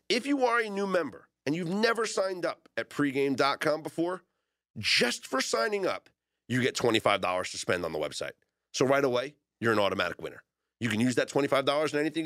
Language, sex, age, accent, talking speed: English, male, 40-59, American, 195 wpm